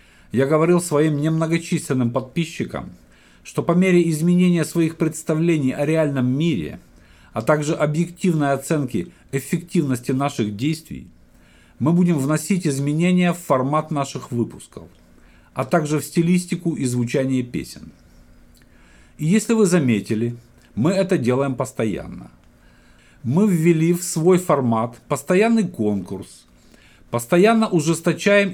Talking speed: 110 wpm